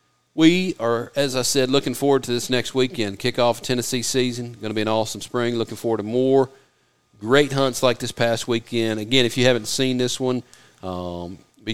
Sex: male